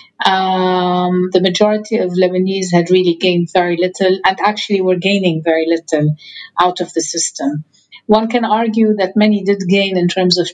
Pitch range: 175-210 Hz